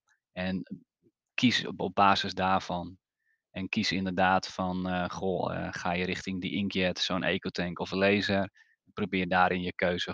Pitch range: 90-100 Hz